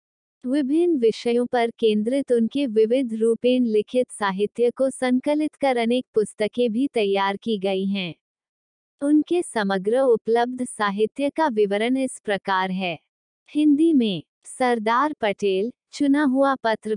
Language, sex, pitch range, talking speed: Hindi, female, 210-260 Hz, 125 wpm